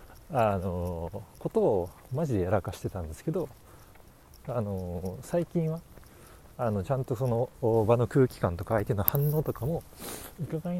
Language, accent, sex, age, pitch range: Japanese, native, male, 40-59, 90-130 Hz